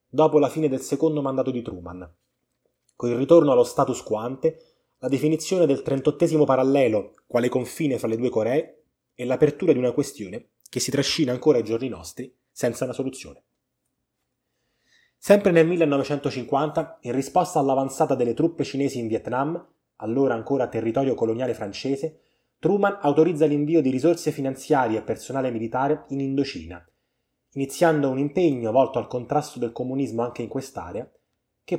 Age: 20-39